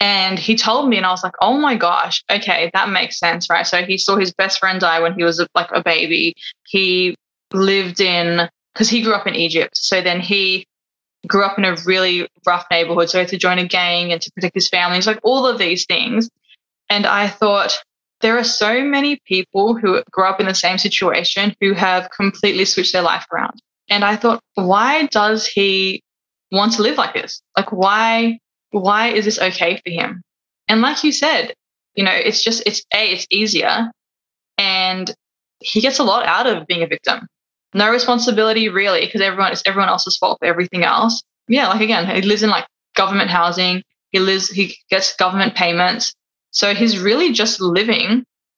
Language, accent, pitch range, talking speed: English, Australian, 185-220 Hz, 200 wpm